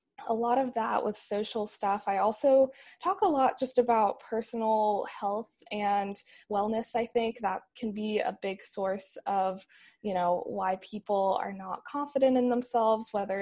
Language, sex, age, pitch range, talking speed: English, female, 20-39, 195-225 Hz, 165 wpm